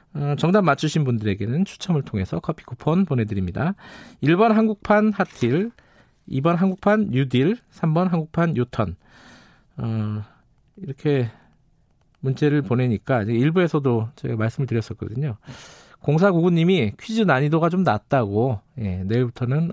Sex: male